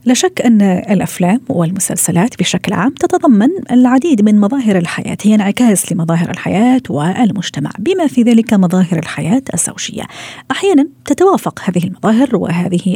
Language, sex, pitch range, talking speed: Arabic, female, 175-220 Hz, 130 wpm